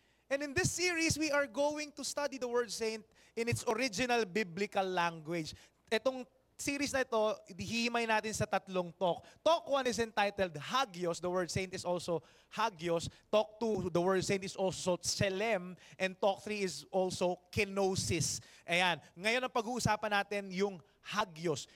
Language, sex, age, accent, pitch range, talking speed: English, male, 20-39, Filipino, 175-225 Hz, 160 wpm